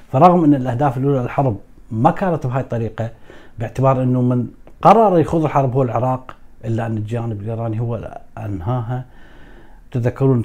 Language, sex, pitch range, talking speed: Arabic, male, 110-140 Hz, 140 wpm